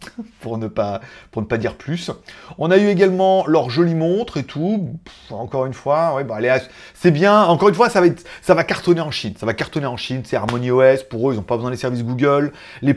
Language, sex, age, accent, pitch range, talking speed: French, male, 30-49, French, 135-210 Hz, 255 wpm